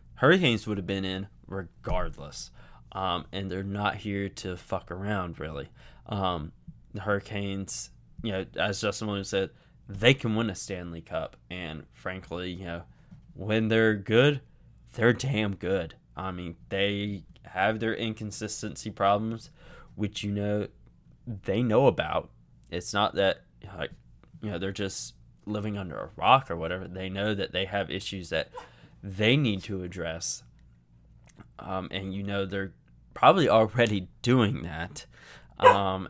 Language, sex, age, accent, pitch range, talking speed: English, male, 20-39, American, 90-105 Hz, 150 wpm